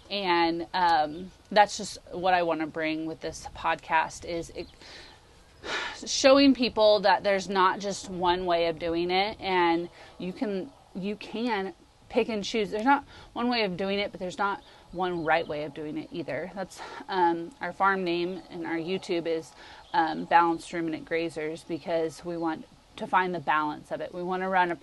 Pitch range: 165-195 Hz